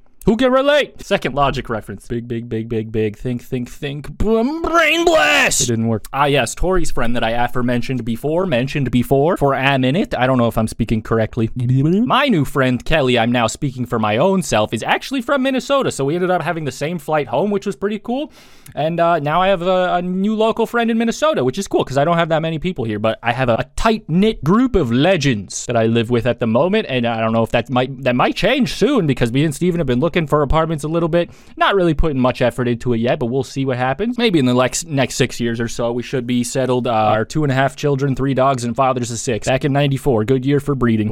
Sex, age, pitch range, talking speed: male, 20-39, 125-185 Hz, 255 wpm